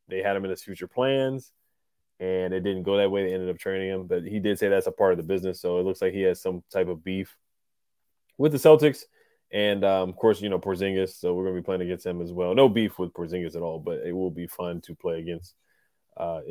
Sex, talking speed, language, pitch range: male, 265 wpm, English, 90-115 Hz